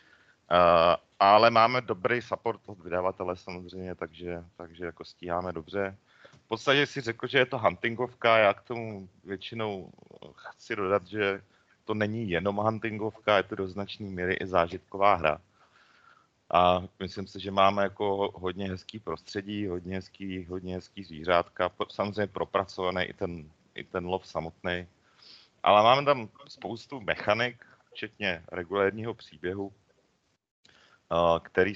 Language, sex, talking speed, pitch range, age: Slovak, male, 130 wpm, 90-105 Hz, 30-49